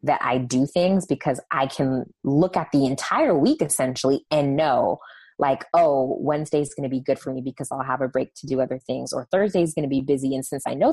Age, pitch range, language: 20-39, 135-160 Hz, English